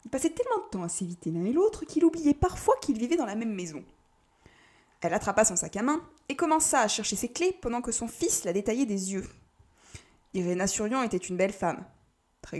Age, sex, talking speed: 20-39, female, 220 wpm